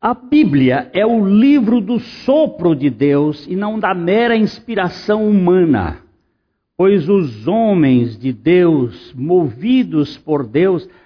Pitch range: 145-215 Hz